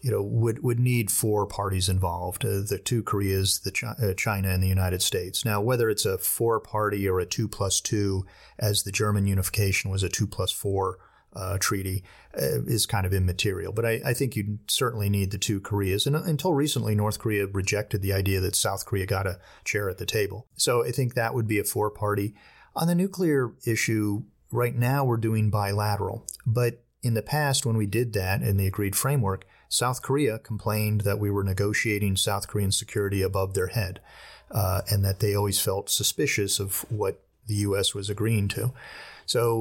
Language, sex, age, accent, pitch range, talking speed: English, male, 30-49, American, 100-115 Hz, 200 wpm